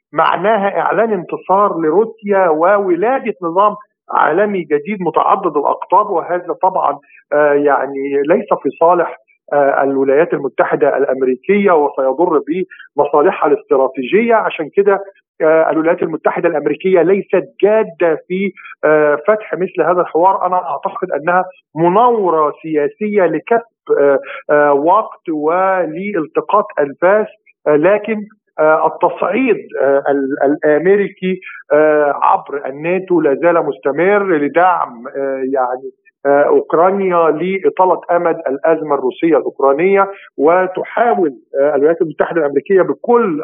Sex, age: male, 50-69